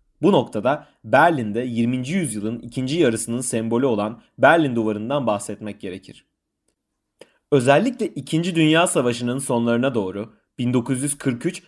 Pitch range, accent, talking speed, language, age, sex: 115-140 Hz, native, 105 wpm, Turkish, 30-49, male